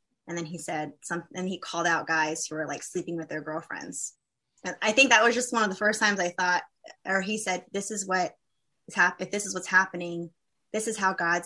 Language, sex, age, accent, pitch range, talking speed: English, female, 20-39, American, 165-200 Hz, 240 wpm